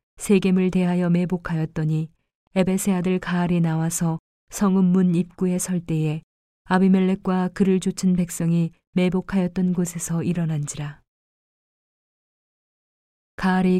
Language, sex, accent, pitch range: Korean, female, native, 170-190 Hz